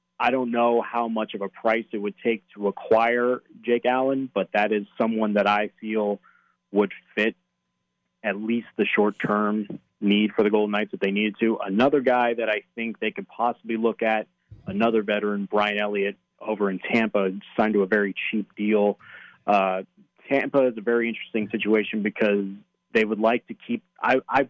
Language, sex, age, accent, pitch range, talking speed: English, male, 30-49, American, 100-115 Hz, 185 wpm